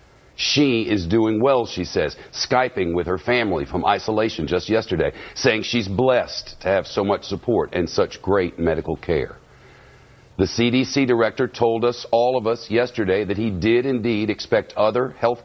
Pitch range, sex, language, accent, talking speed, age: 100-125 Hz, male, English, American, 165 wpm, 50-69